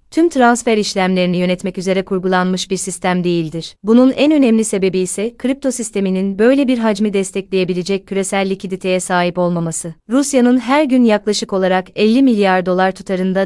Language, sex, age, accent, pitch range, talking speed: Turkish, female, 30-49, native, 185-225 Hz, 145 wpm